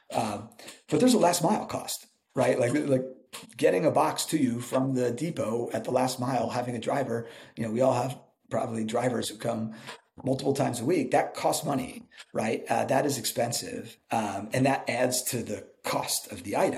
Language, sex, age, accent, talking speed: English, male, 40-59, American, 200 wpm